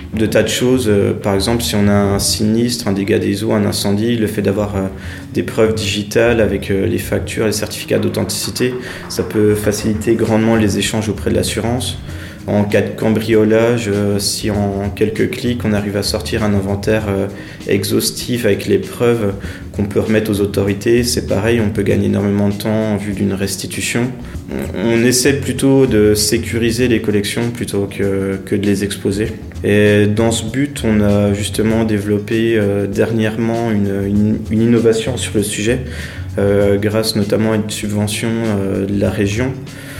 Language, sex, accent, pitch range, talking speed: French, male, French, 100-115 Hz, 160 wpm